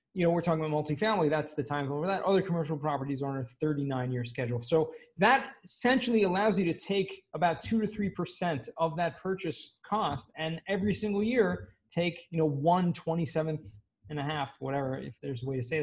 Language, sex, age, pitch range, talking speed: English, male, 20-39, 150-210 Hz, 205 wpm